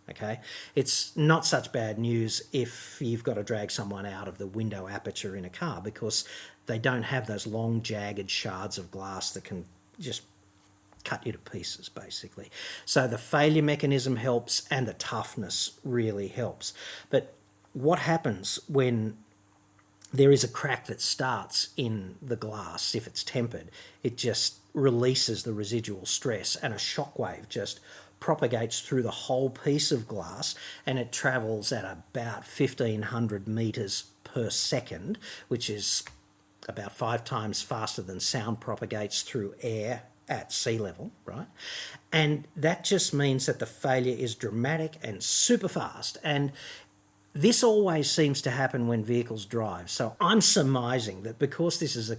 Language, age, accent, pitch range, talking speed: English, 50-69, Australian, 105-135 Hz, 155 wpm